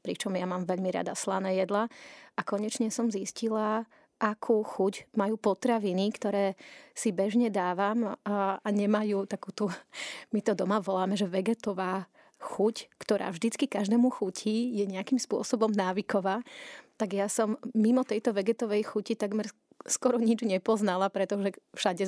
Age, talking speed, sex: 30-49, 140 wpm, female